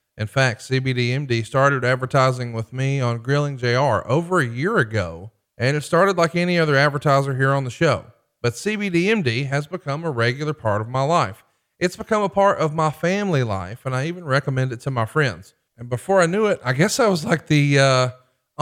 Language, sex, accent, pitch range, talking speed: English, male, American, 125-165 Hz, 205 wpm